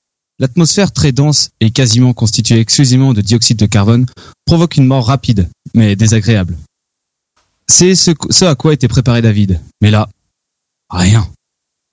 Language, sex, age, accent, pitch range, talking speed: French, male, 20-39, French, 105-135 Hz, 145 wpm